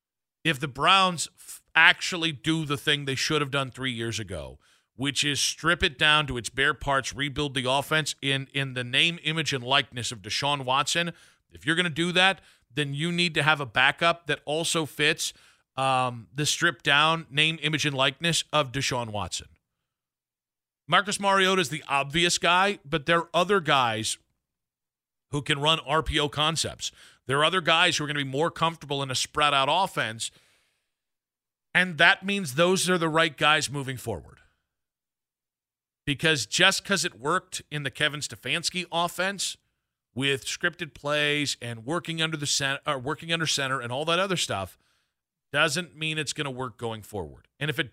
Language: English